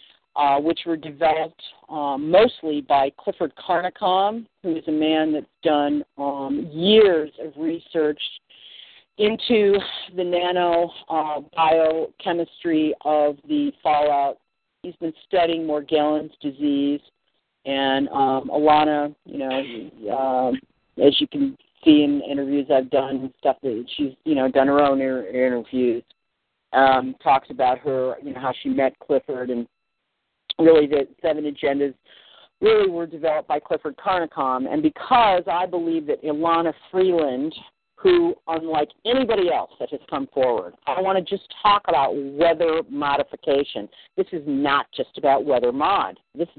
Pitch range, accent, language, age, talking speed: 140-200 Hz, American, English, 40-59, 140 wpm